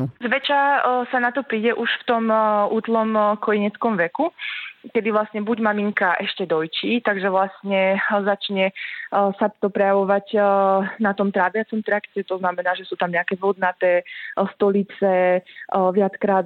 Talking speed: 130 wpm